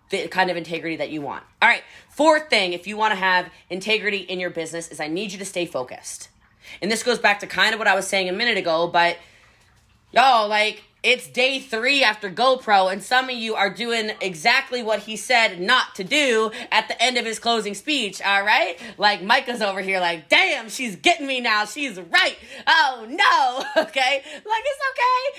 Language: English